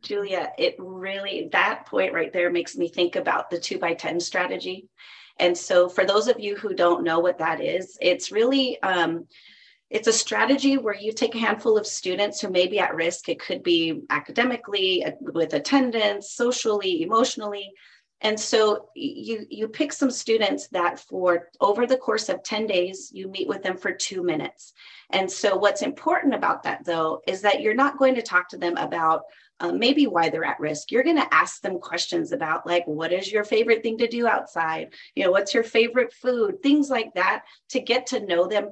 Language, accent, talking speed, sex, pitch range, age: English, American, 200 wpm, female, 180-255 Hz, 30-49